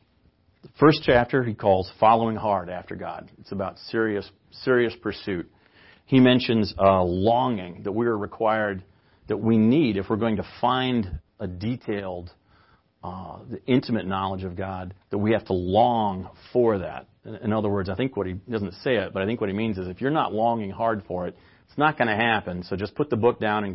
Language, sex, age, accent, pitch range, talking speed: English, male, 40-59, American, 95-115 Hz, 205 wpm